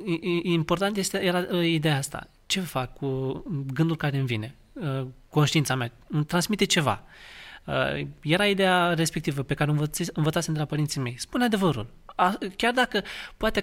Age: 20-39